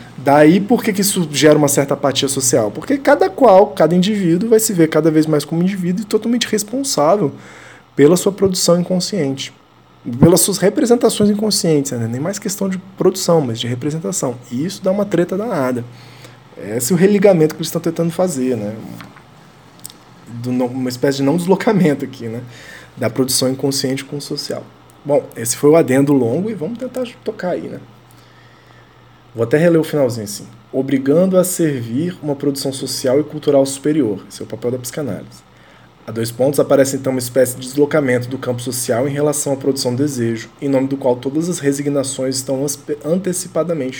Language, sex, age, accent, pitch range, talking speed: Portuguese, male, 20-39, Brazilian, 125-175 Hz, 180 wpm